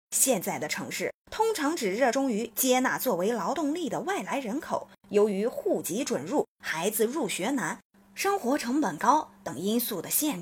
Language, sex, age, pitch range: Chinese, female, 20-39, 190-280 Hz